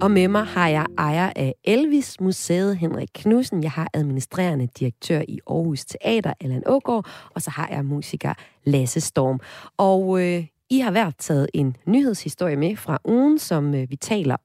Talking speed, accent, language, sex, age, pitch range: 175 wpm, native, Danish, female, 30-49, 145-205 Hz